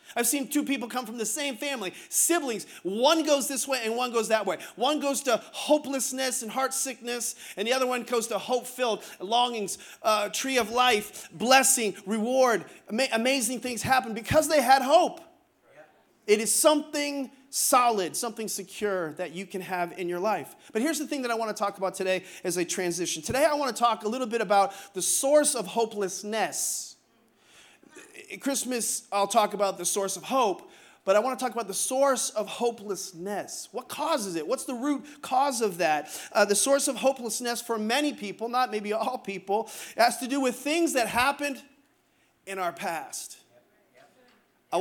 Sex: male